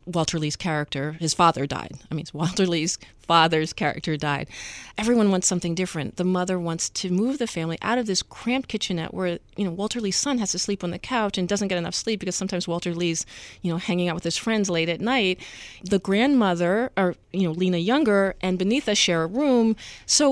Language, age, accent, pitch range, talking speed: English, 30-49, American, 170-220 Hz, 215 wpm